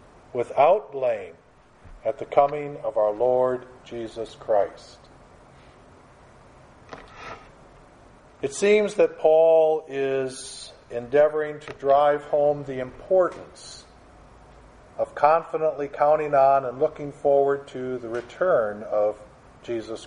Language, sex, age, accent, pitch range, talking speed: English, male, 50-69, American, 125-155 Hz, 100 wpm